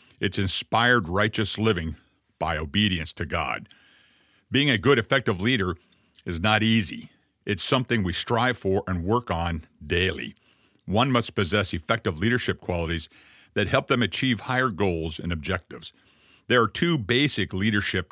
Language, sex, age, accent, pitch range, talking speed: English, male, 50-69, American, 95-120 Hz, 145 wpm